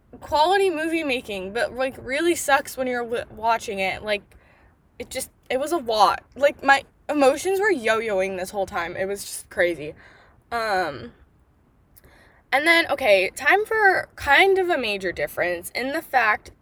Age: 10-29